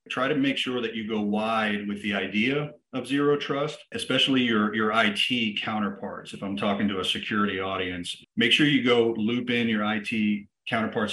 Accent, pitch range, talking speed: American, 105-140 Hz, 190 wpm